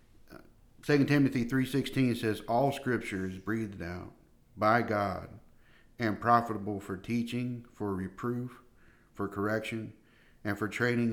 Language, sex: English, male